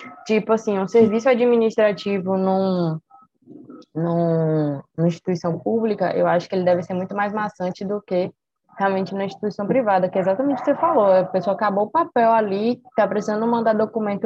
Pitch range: 170-215 Hz